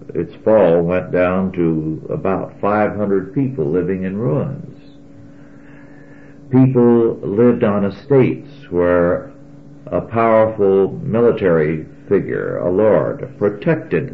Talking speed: 100 wpm